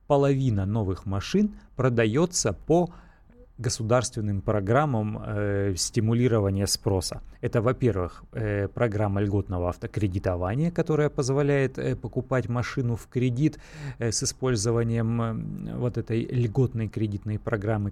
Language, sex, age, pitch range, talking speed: Russian, male, 30-49, 110-135 Hz, 90 wpm